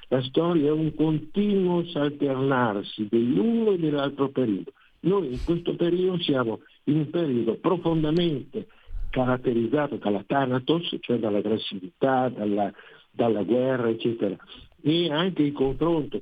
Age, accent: 50-69, native